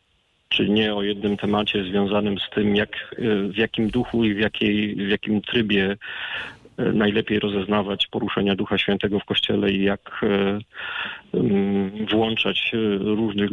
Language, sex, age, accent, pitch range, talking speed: Polish, male, 40-59, native, 100-110 Hz, 120 wpm